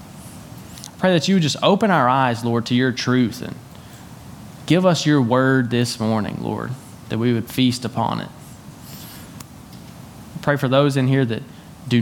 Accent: American